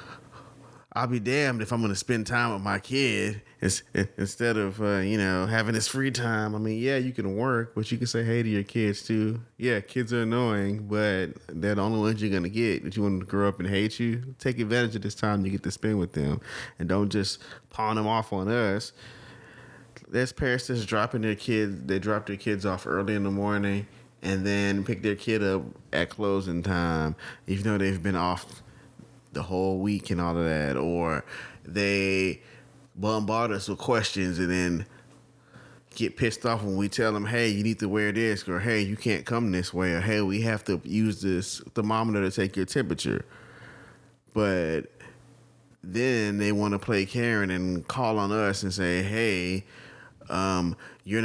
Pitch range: 95-115 Hz